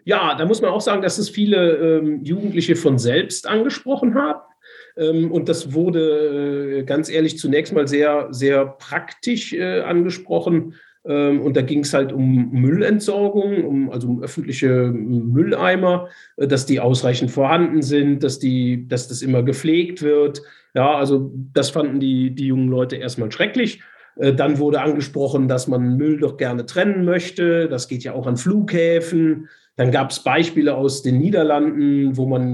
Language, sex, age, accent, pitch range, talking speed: German, male, 50-69, German, 130-165 Hz, 170 wpm